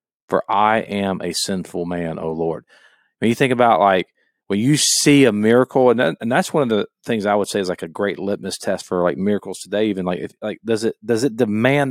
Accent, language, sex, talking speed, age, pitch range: American, English, male, 245 wpm, 40-59, 95-120 Hz